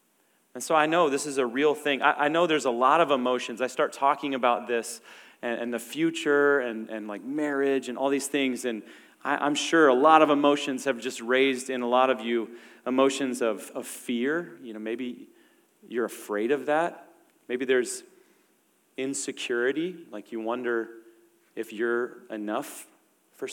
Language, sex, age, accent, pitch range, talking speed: English, male, 30-49, American, 125-160 Hz, 170 wpm